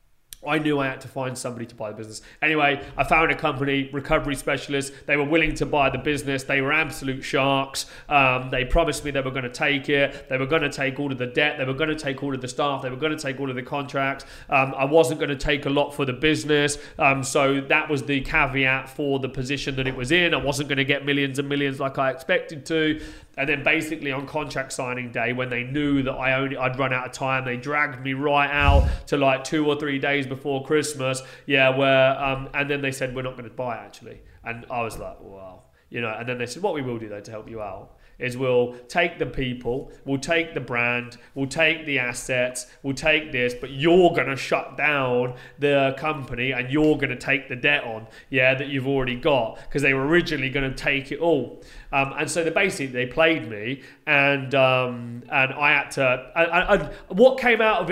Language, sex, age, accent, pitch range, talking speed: English, male, 30-49, British, 130-150 Hz, 235 wpm